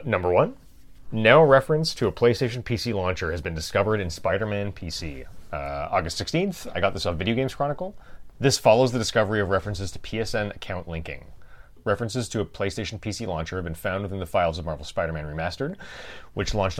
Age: 30-49